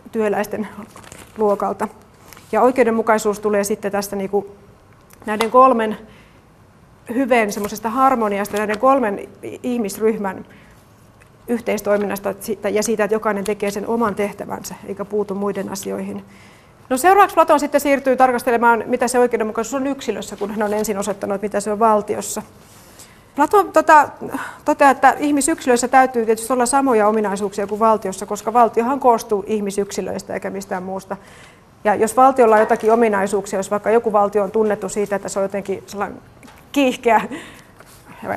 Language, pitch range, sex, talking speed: Finnish, 205-240 Hz, female, 135 wpm